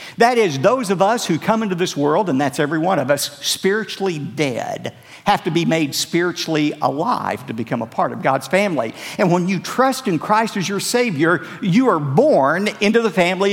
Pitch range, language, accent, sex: 135-195 Hz, English, American, male